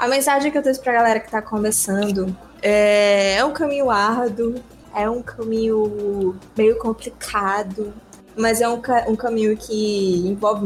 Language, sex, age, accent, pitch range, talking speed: Portuguese, female, 20-39, Brazilian, 190-220 Hz, 160 wpm